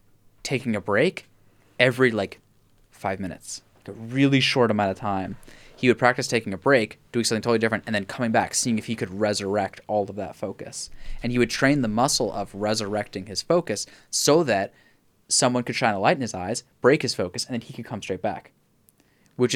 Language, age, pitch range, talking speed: English, 20-39, 100-135 Hz, 205 wpm